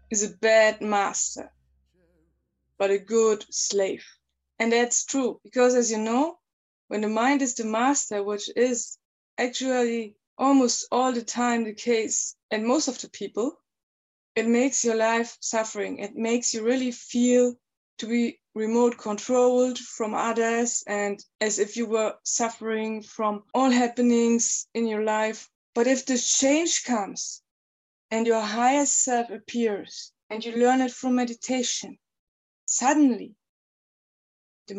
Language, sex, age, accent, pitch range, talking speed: English, female, 20-39, German, 215-250 Hz, 140 wpm